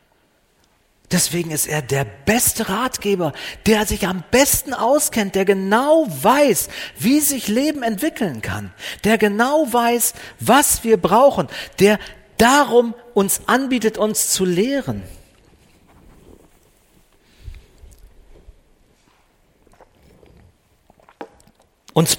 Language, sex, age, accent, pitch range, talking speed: German, male, 40-59, German, 150-220 Hz, 90 wpm